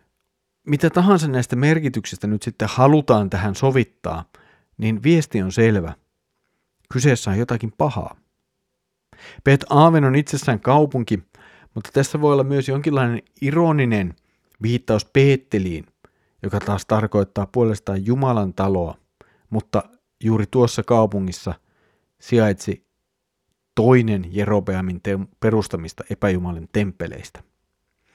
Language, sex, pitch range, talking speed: Finnish, male, 100-135 Hz, 100 wpm